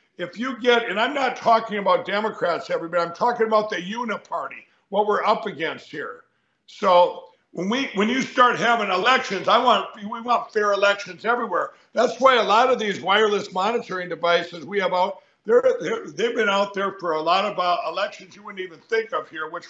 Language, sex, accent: English, male, American